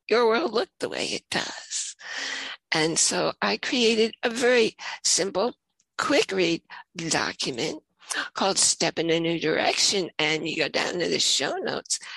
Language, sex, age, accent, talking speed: English, female, 60-79, American, 155 wpm